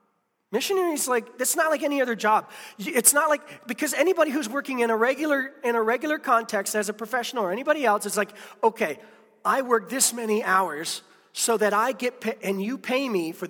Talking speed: 205 wpm